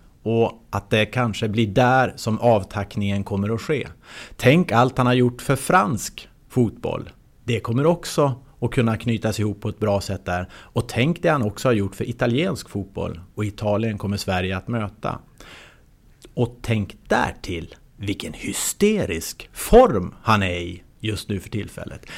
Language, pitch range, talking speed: English, 105-125 Hz, 160 wpm